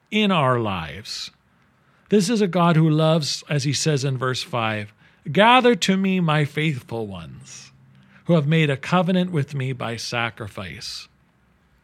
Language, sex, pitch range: English, male, 130-175 Hz